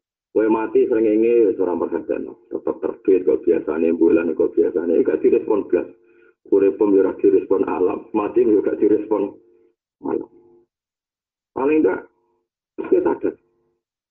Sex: male